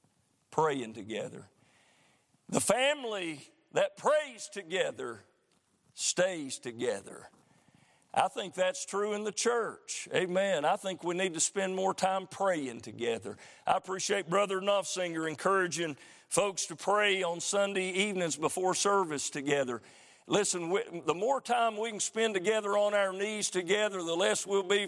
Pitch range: 160-200 Hz